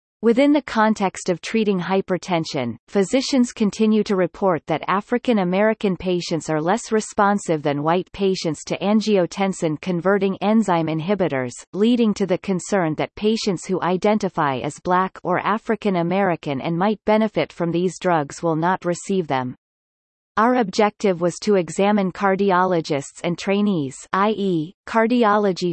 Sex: female